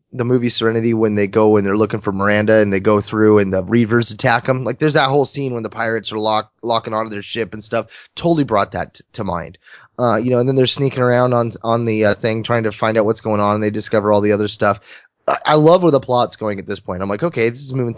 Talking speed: 285 wpm